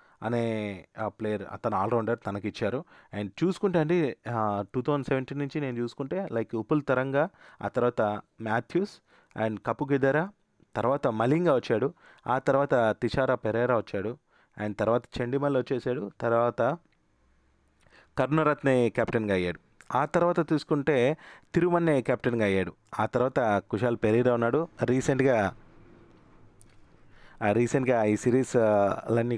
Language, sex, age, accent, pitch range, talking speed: Telugu, male, 30-49, native, 105-135 Hz, 110 wpm